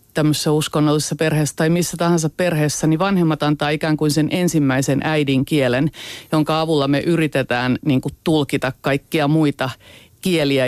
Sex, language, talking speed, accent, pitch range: female, Finnish, 145 wpm, native, 135-160 Hz